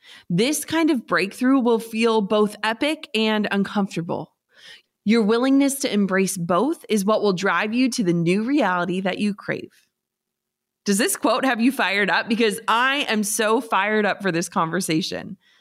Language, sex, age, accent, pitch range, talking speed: English, female, 20-39, American, 190-250 Hz, 165 wpm